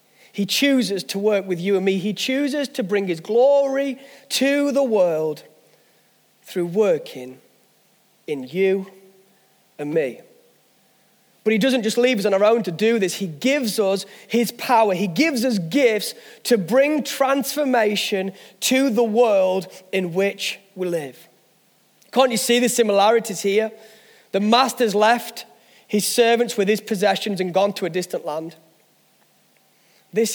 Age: 30-49